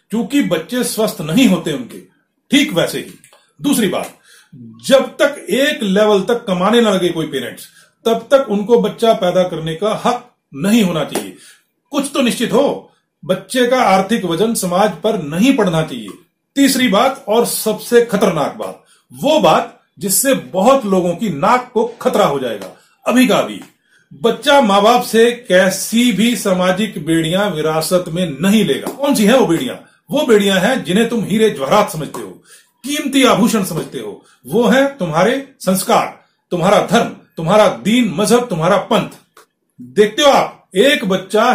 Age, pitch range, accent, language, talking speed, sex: 40-59, 185-245 Hz, native, Hindi, 160 wpm, male